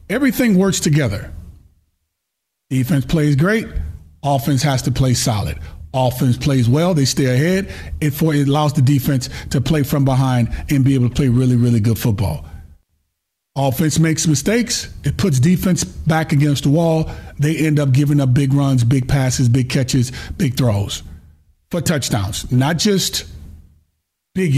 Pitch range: 110-175 Hz